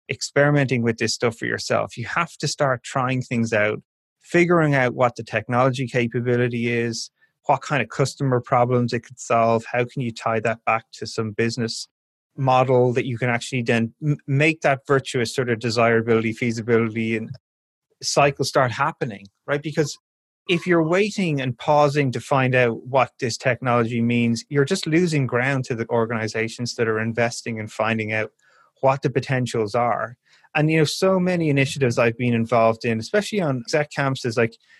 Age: 30-49